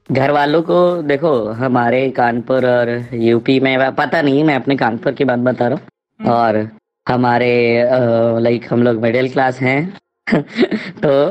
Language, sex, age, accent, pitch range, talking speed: Hindi, female, 20-39, native, 125-155 Hz, 150 wpm